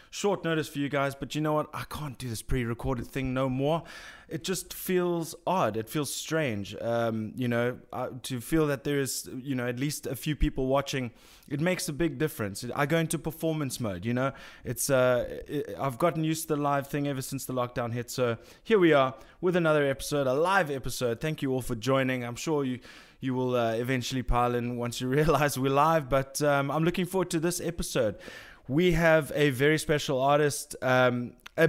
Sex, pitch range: male, 125-155 Hz